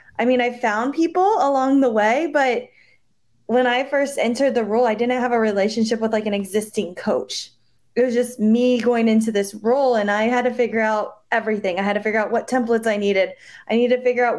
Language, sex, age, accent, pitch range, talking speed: English, female, 20-39, American, 220-275 Hz, 225 wpm